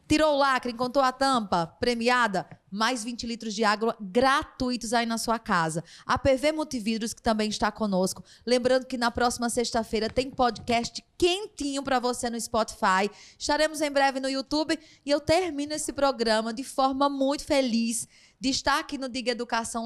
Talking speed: 170 wpm